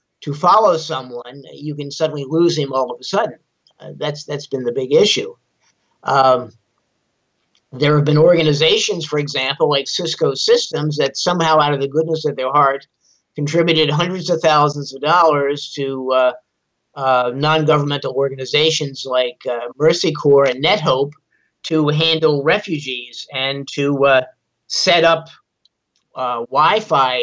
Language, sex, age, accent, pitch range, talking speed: English, male, 50-69, American, 135-160 Hz, 145 wpm